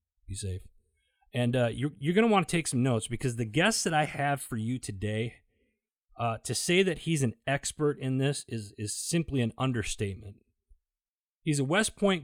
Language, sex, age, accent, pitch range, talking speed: English, male, 30-49, American, 110-150 Hz, 195 wpm